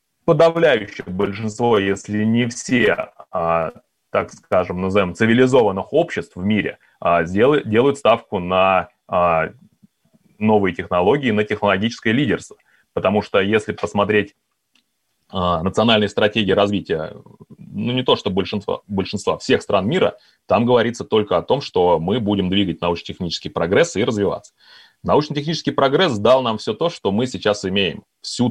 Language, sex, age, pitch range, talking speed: Russian, male, 30-49, 90-110 Hz, 125 wpm